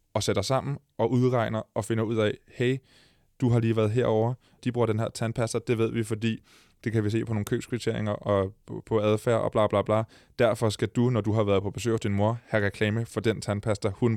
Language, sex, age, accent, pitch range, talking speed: Danish, male, 20-39, native, 100-120 Hz, 235 wpm